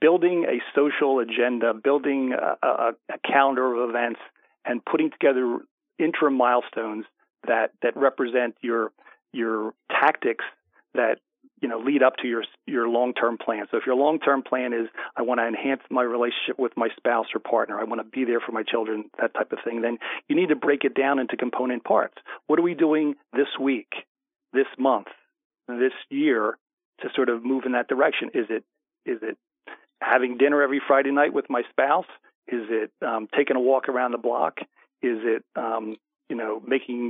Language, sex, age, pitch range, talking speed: English, male, 40-59, 120-150 Hz, 185 wpm